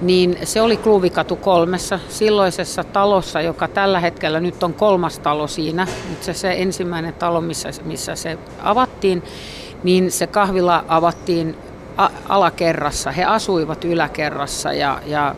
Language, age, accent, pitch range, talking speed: Finnish, 50-69, native, 160-190 Hz, 130 wpm